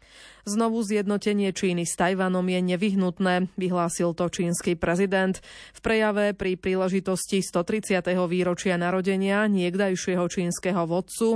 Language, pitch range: Slovak, 180-210 Hz